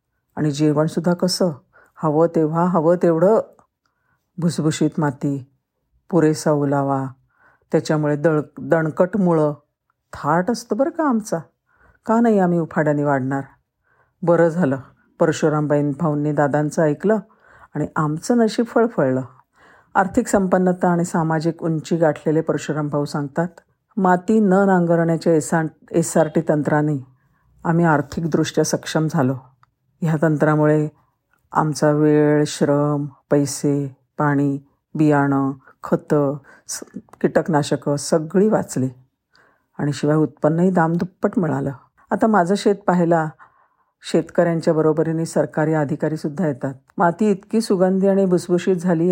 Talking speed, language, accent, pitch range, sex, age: 105 wpm, Marathi, native, 150-175 Hz, female, 50-69